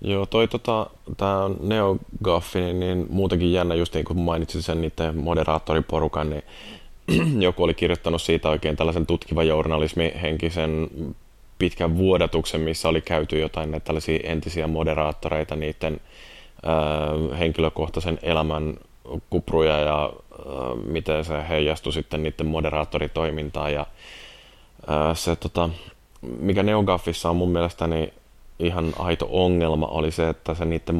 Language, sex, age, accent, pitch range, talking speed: Finnish, male, 20-39, native, 75-85 Hz, 130 wpm